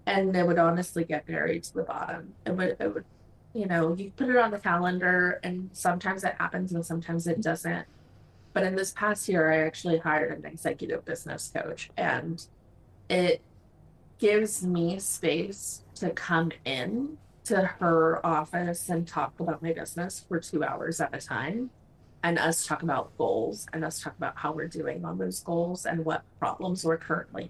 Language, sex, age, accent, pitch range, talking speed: English, female, 30-49, American, 160-190 Hz, 180 wpm